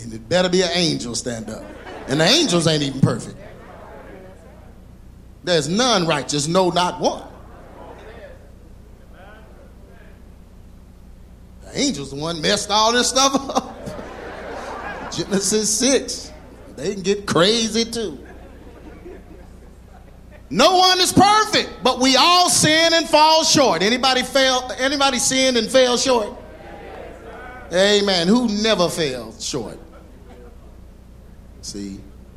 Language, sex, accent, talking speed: English, male, American, 110 wpm